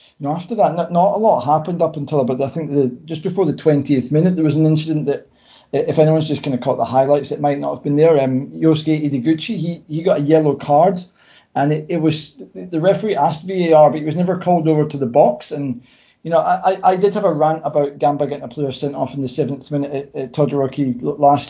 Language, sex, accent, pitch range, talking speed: English, male, British, 135-160 Hz, 250 wpm